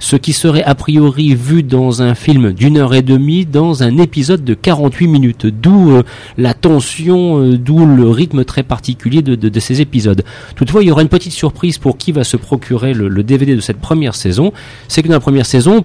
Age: 40-59